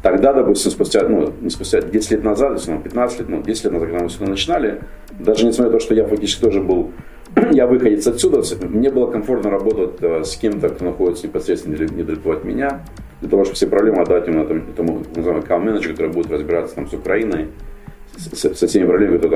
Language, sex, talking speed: Russian, male, 205 wpm